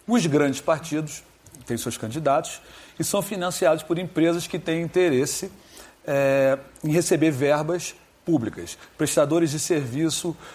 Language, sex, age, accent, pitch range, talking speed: Portuguese, male, 40-59, Brazilian, 135-185 Hz, 120 wpm